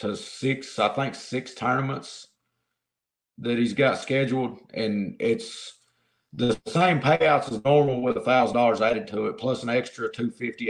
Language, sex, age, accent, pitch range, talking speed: English, male, 50-69, American, 110-130 Hz, 155 wpm